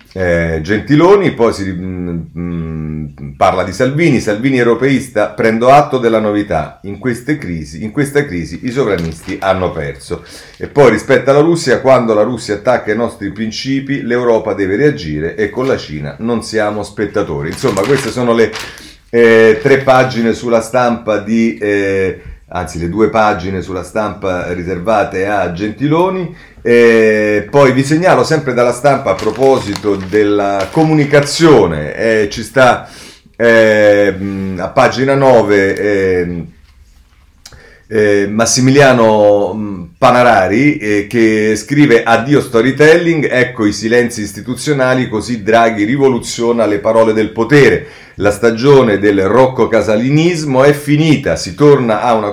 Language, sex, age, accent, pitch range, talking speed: Italian, male, 40-59, native, 100-130 Hz, 130 wpm